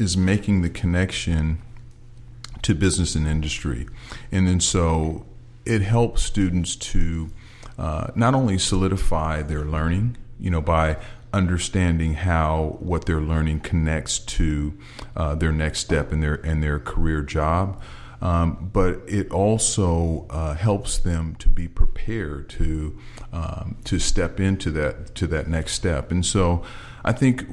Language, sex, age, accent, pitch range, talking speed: English, male, 40-59, American, 80-100 Hz, 140 wpm